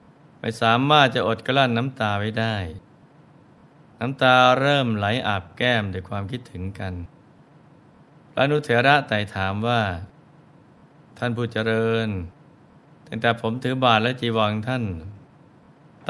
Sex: male